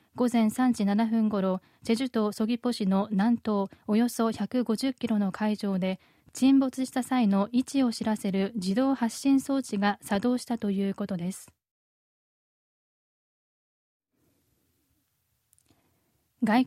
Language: Japanese